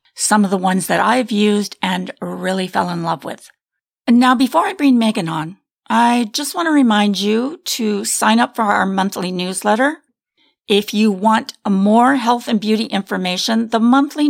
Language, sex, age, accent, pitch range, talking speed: English, female, 40-59, American, 205-255 Hz, 175 wpm